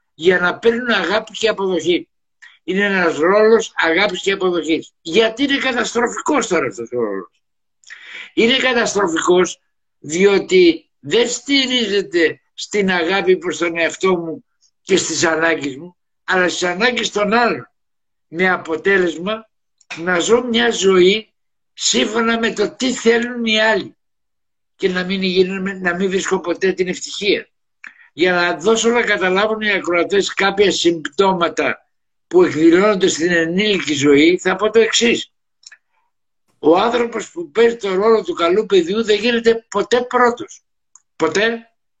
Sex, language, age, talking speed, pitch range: male, Greek, 60-79, 135 wpm, 175-235 Hz